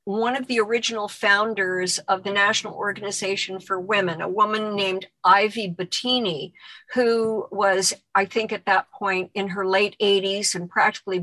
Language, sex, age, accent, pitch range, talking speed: English, female, 50-69, American, 195-255 Hz, 155 wpm